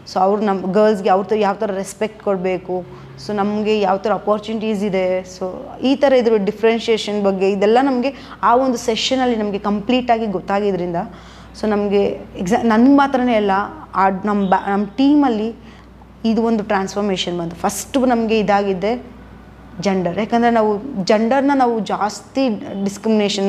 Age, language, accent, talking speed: 20-39, Kannada, native, 140 wpm